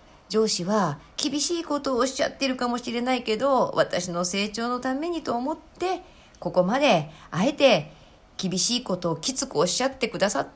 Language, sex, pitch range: Japanese, female, 160-255 Hz